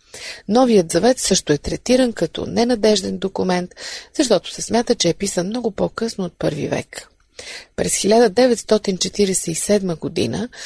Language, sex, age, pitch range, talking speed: Bulgarian, female, 30-49, 180-225 Hz, 125 wpm